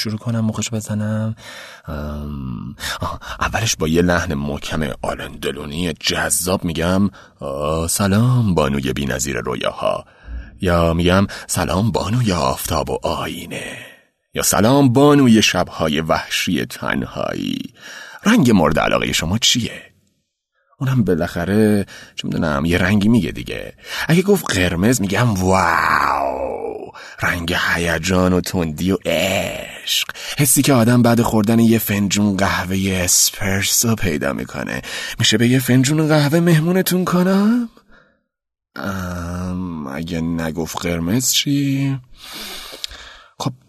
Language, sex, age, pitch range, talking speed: Persian, male, 30-49, 90-130 Hz, 105 wpm